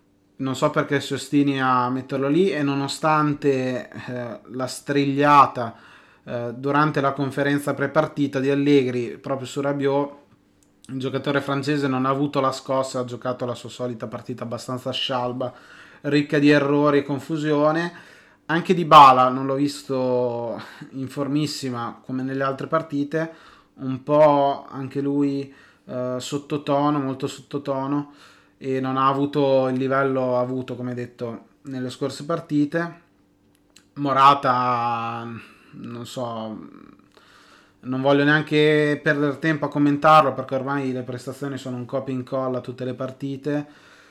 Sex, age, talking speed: male, 20-39, 135 wpm